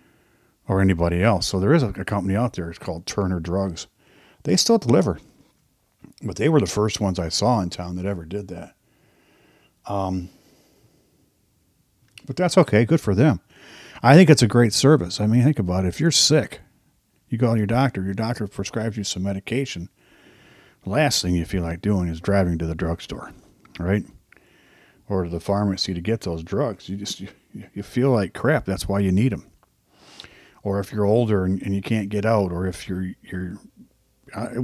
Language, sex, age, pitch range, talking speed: English, male, 40-59, 95-115 Hz, 195 wpm